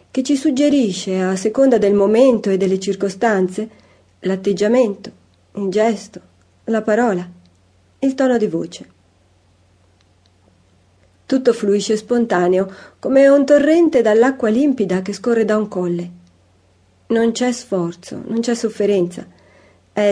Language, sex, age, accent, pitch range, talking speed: Italian, female, 40-59, native, 160-230 Hz, 115 wpm